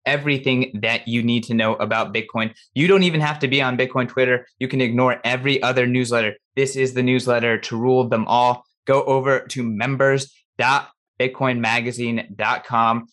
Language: English